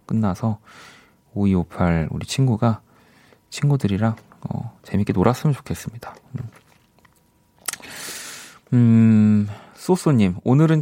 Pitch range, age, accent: 90-125 Hz, 40-59, native